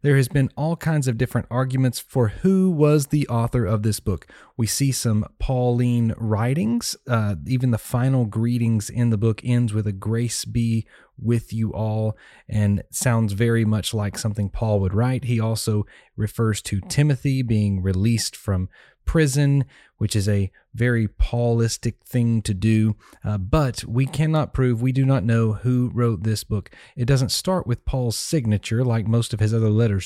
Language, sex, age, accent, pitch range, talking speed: English, male, 30-49, American, 110-135 Hz, 175 wpm